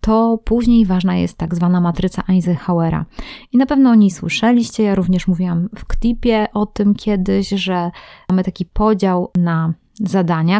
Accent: native